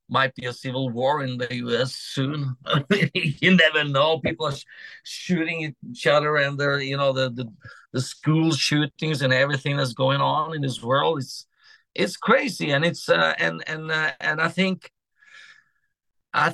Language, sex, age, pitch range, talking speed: English, male, 50-69, 130-160 Hz, 180 wpm